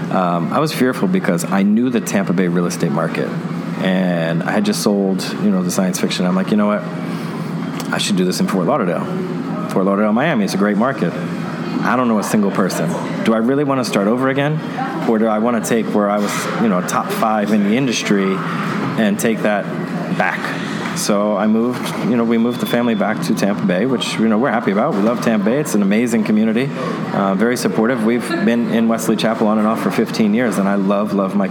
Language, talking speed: English, 230 wpm